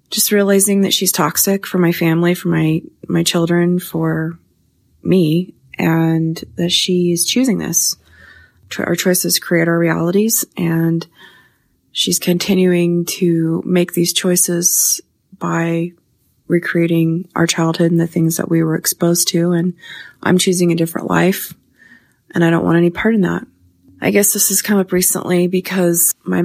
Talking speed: 150 wpm